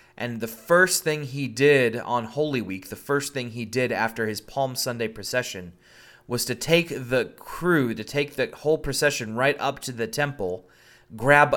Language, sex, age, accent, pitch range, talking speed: English, male, 30-49, American, 110-140 Hz, 180 wpm